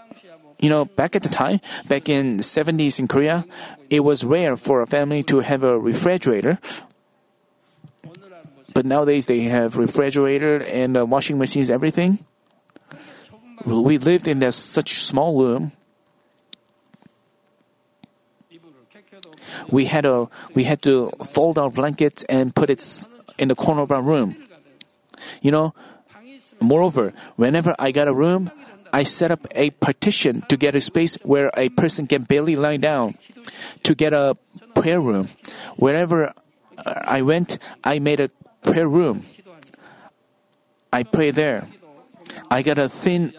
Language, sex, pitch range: Korean, male, 135-175 Hz